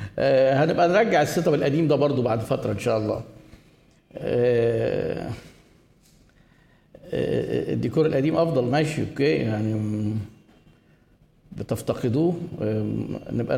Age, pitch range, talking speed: 50-69, 130-170 Hz, 90 wpm